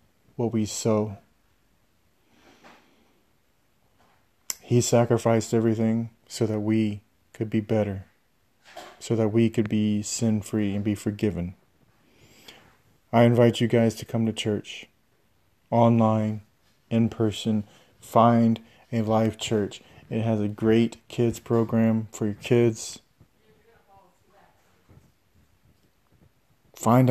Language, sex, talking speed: English, male, 105 wpm